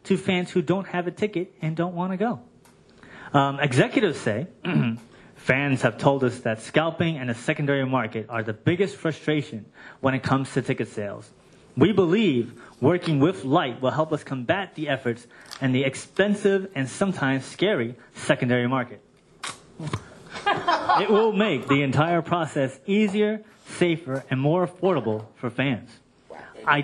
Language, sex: English, male